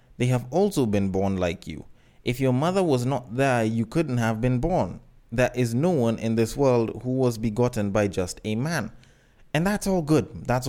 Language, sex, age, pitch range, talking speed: English, male, 20-39, 115-160 Hz, 210 wpm